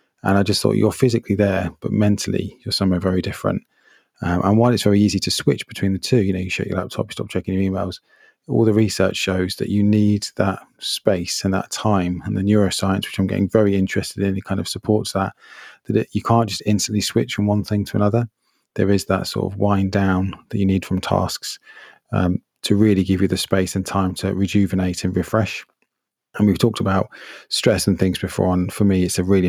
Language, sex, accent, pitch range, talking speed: English, male, British, 95-105 Hz, 225 wpm